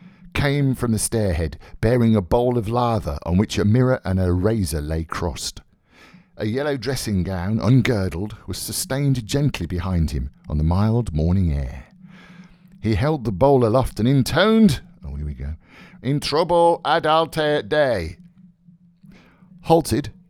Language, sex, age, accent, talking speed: English, male, 50-69, British, 145 wpm